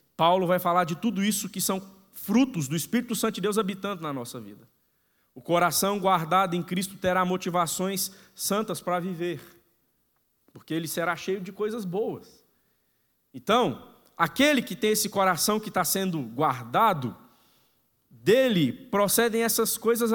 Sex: male